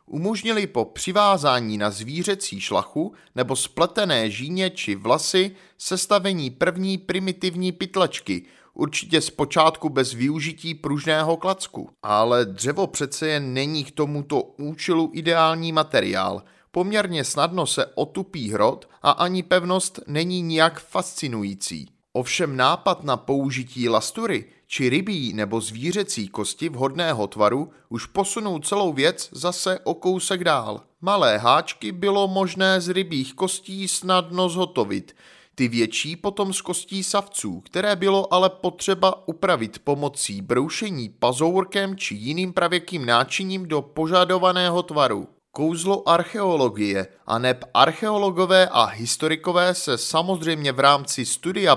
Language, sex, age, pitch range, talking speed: Czech, male, 30-49, 130-185 Hz, 120 wpm